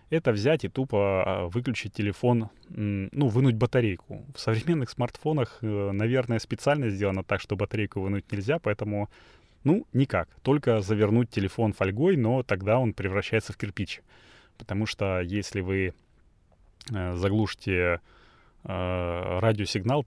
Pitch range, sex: 95-115 Hz, male